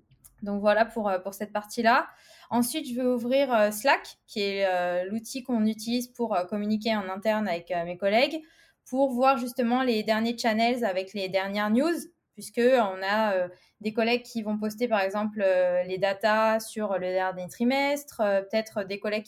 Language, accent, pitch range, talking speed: French, French, 200-245 Hz, 160 wpm